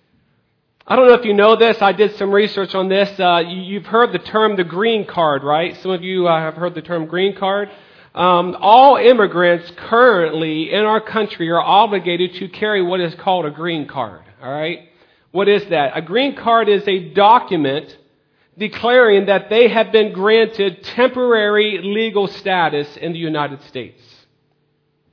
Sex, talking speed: male, 175 wpm